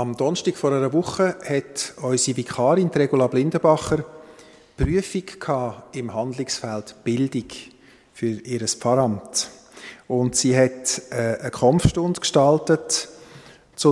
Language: German